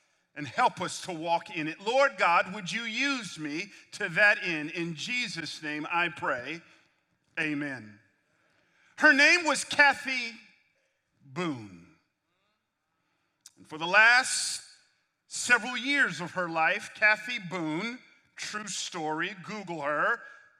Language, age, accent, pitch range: English, 40-59, American, 170-255 Hz